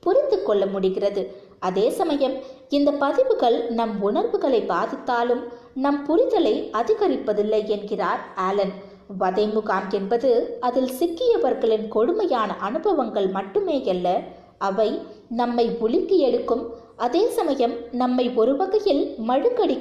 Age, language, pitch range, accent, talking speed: 20-39, Tamil, 205-320 Hz, native, 95 wpm